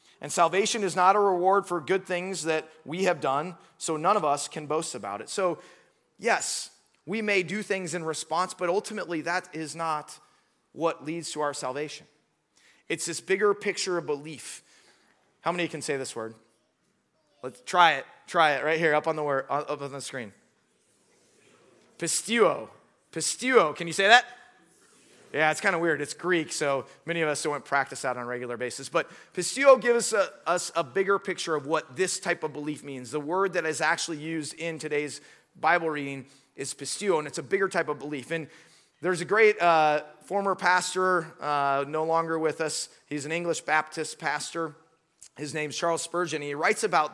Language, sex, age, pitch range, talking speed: English, male, 30-49, 150-180 Hz, 190 wpm